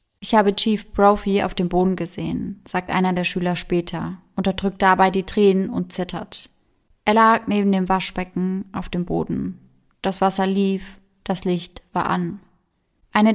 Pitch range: 180-210 Hz